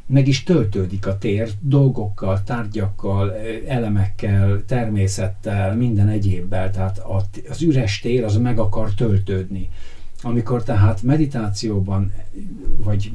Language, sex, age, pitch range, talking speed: Hungarian, male, 50-69, 100-115 Hz, 105 wpm